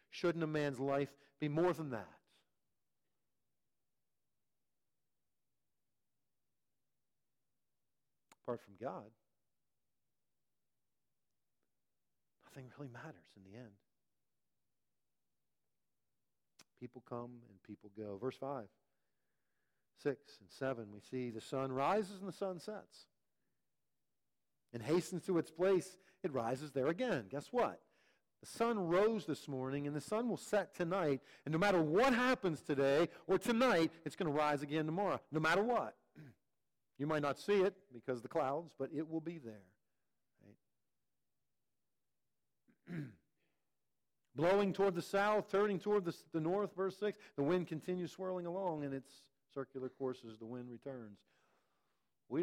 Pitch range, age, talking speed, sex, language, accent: 130-185 Hz, 50-69, 130 wpm, male, English, American